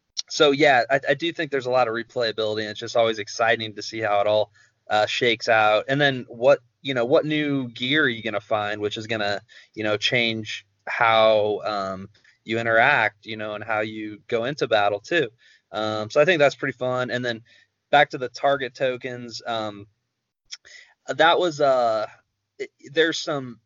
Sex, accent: male, American